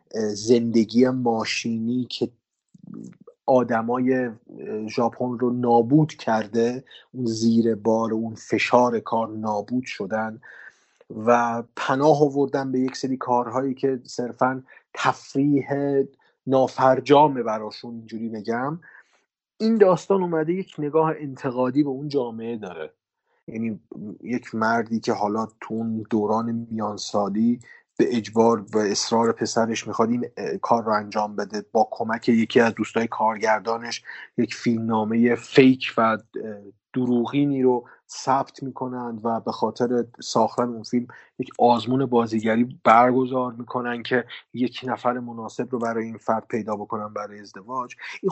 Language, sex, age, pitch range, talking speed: Persian, male, 30-49, 115-130 Hz, 125 wpm